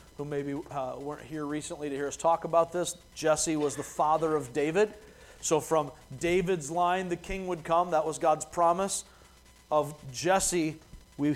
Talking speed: 175 wpm